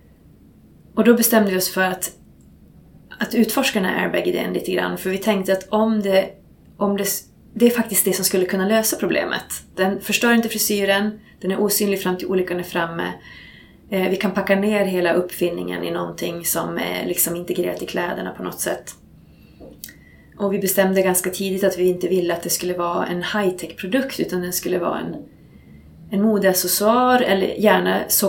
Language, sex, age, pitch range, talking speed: English, female, 30-49, 175-200 Hz, 175 wpm